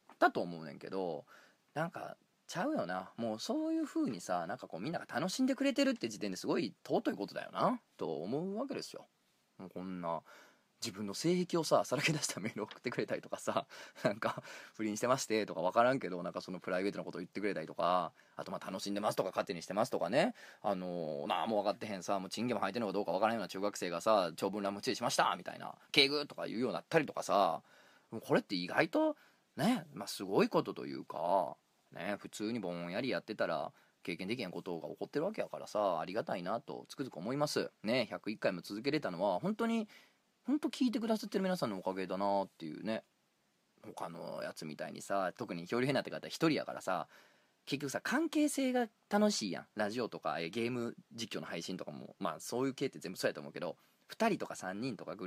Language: Japanese